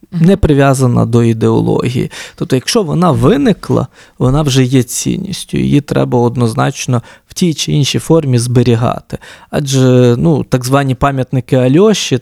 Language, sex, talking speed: Ukrainian, male, 135 wpm